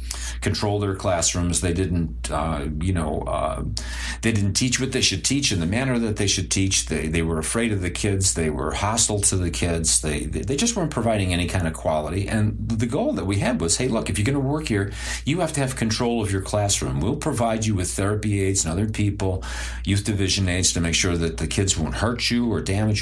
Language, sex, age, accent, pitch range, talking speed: English, male, 40-59, American, 80-110 Hz, 235 wpm